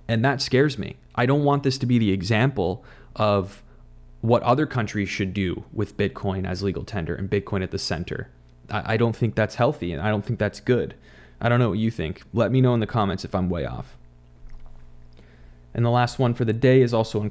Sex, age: male, 30-49